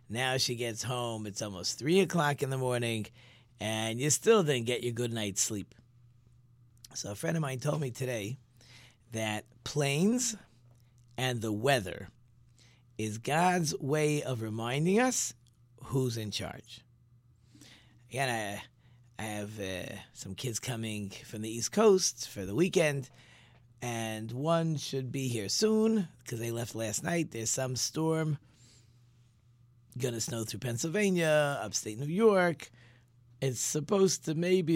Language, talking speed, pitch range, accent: English, 145 wpm, 120-155 Hz, American